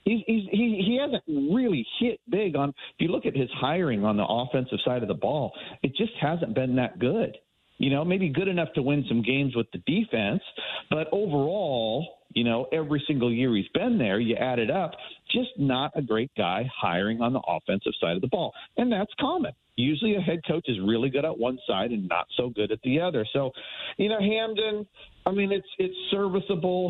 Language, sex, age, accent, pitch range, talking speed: English, male, 40-59, American, 120-175 Hz, 205 wpm